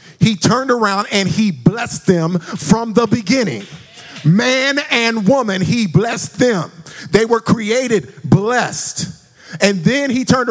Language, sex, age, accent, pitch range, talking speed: English, male, 50-69, American, 150-220 Hz, 135 wpm